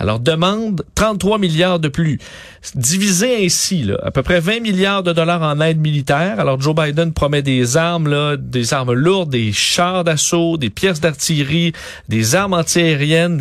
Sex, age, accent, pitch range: male, 40-59, Canadian, 145-180 Hz